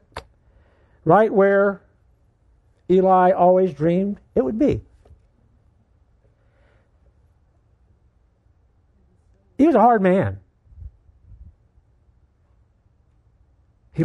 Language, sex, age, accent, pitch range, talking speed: English, male, 60-79, American, 95-145 Hz, 60 wpm